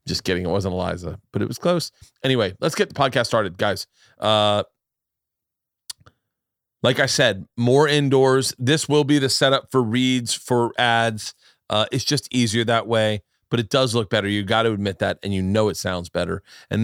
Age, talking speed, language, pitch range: 40-59, 195 wpm, English, 110-140 Hz